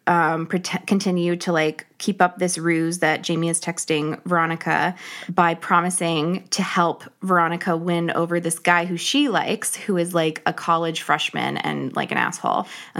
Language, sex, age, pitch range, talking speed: English, female, 20-39, 165-185 Hz, 165 wpm